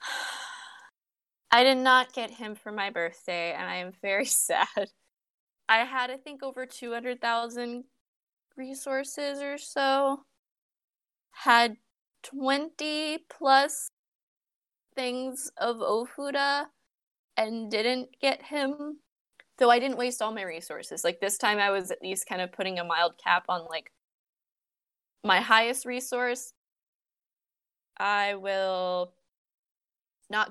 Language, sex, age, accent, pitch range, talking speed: English, female, 20-39, American, 180-270 Hz, 115 wpm